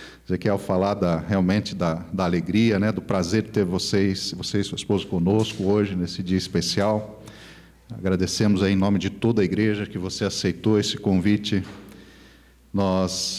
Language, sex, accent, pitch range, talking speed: Portuguese, male, Brazilian, 95-110 Hz, 155 wpm